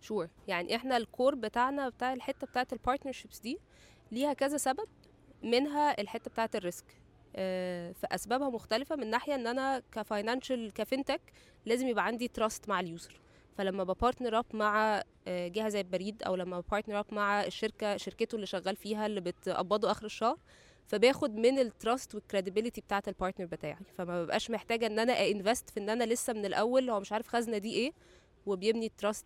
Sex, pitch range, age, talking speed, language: female, 200-250 Hz, 20-39, 180 wpm, Arabic